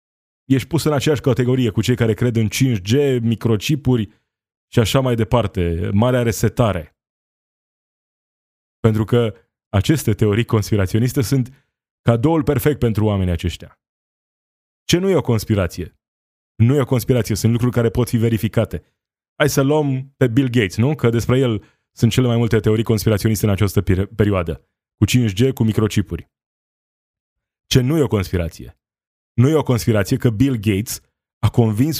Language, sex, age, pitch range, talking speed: Romanian, male, 20-39, 105-125 Hz, 150 wpm